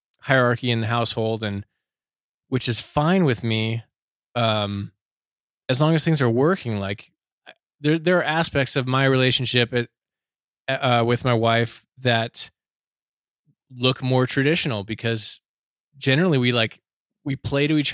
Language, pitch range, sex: English, 115-140 Hz, male